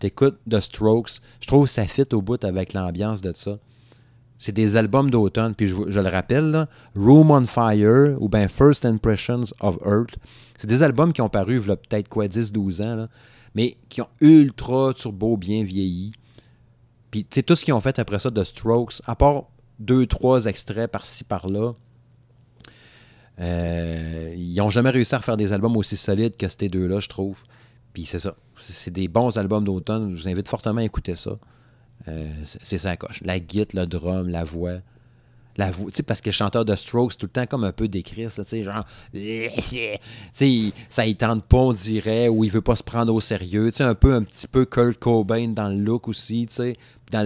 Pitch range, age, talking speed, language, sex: 100-120 Hz, 30-49, 210 wpm, French, male